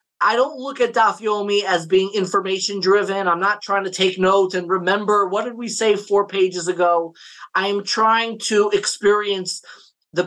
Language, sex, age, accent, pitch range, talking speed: English, male, 30-49, American, 175-210 Hz, 165 wpm